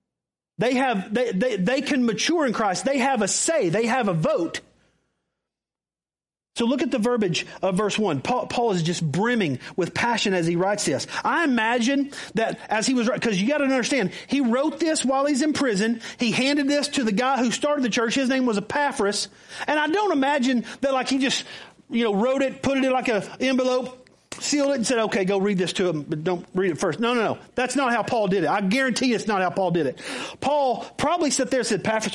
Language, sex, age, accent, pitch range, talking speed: English, male, 40-59, American, 230-340 Hz, 235 wpm